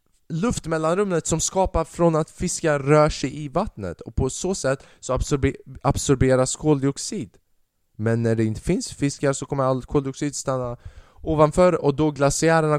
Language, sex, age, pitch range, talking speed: Swedish, male, 20-39, 110-160 Hz, 160 wpm